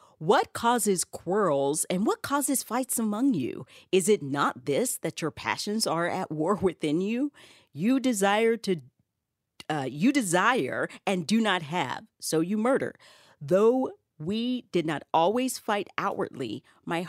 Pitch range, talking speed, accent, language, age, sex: 160-255 Hz, 150 wpm, American, English, 40-59, female